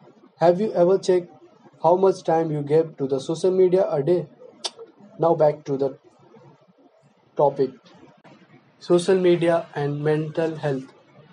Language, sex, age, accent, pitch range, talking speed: English, male, 20-39, Indian, 145-175 Hz, 130 wpm